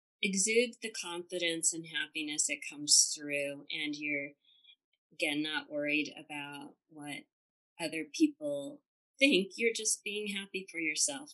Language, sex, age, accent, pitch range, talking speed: English, female, 30-49, American, 150-235 Hz, 125 wpm